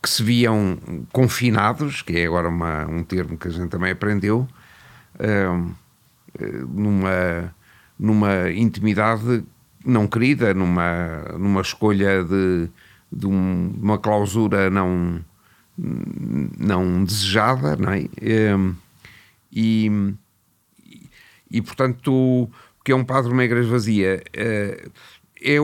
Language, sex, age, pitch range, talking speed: Portuguese, male, 50-69, 95-120 Hz, 110 wpm